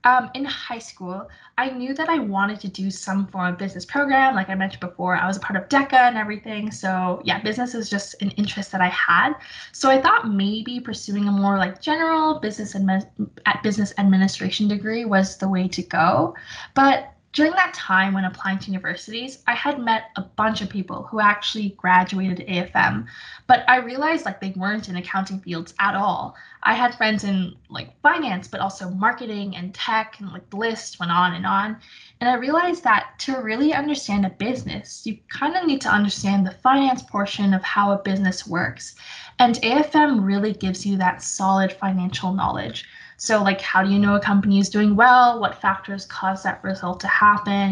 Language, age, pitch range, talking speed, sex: English, 20-39, 190-250 Hz, 195 wpm, female